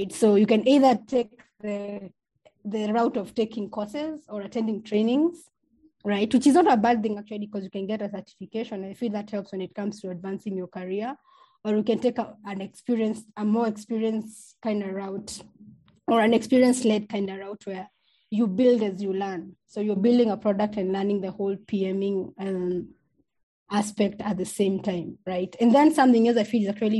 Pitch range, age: 200-230 Hz, 20-39